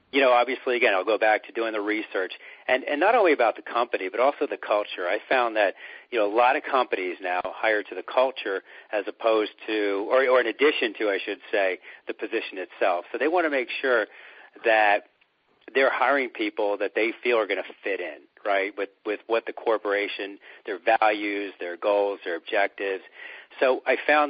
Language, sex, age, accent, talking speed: English, male, 40-59, American, 205 wpm